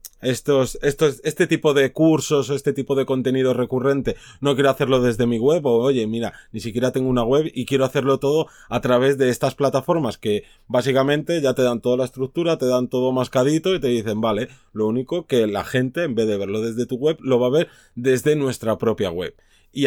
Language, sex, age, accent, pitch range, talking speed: Spanish, male, 30-49, Spanish, 120-140 Hz, 215 wpm